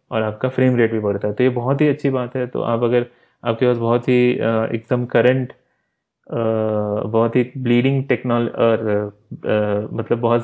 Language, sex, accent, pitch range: Hindi, male, native, 110-125 Hz